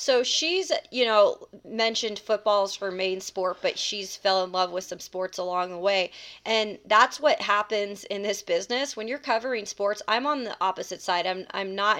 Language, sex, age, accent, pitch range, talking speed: English, female, 30-49, American, 190-230 Hz, 195 wpm